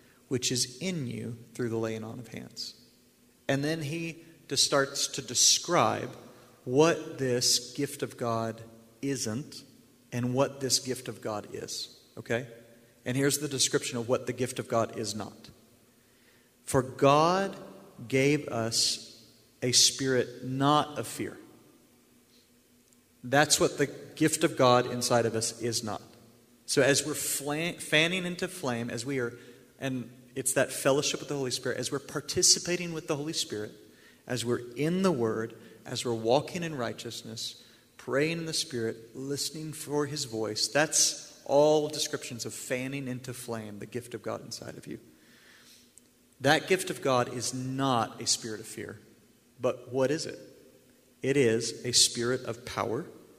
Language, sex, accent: English, male, American